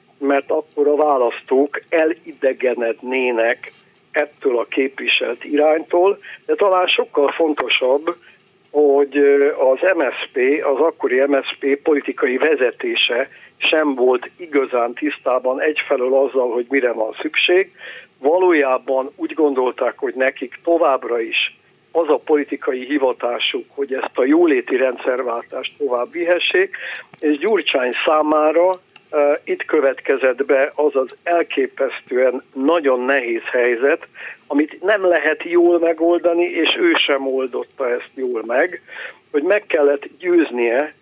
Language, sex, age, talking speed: Hungarian, male, 60-79, 110 wpm